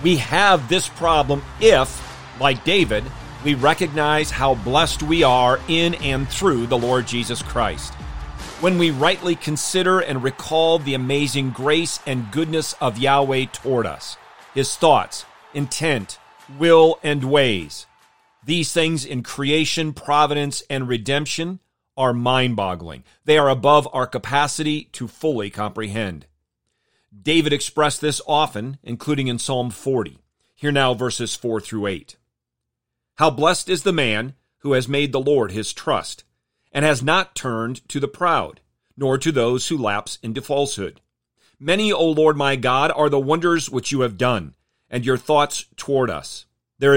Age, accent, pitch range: 40-59, American, 125-155 Hz